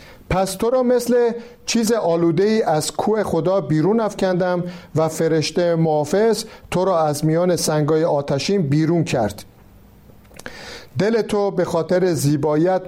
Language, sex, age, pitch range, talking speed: Persian, male, 50-69, 160-205 Hz, 130 wpm